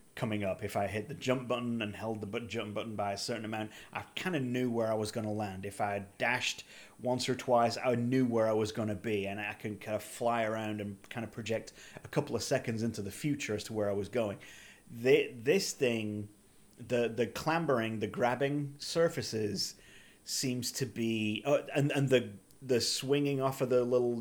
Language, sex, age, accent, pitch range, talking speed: English, male, 30-49, British, 105-125 Hz, 215 wpm